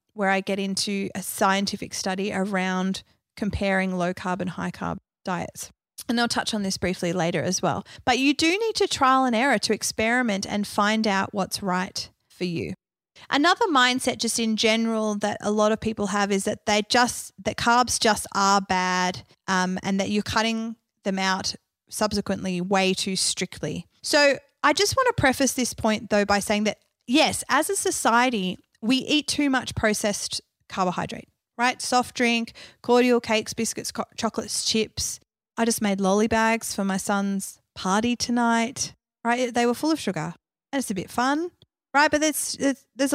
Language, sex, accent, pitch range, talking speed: English, female, Australian, 190-245 Hz, 170 wpm